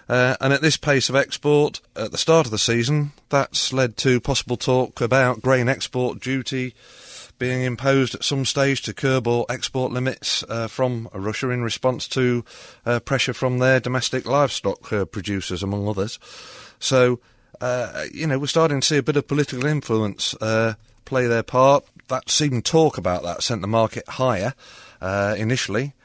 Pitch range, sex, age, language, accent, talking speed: 110-130 Hz, male, 30-49, English, British, 175 wpm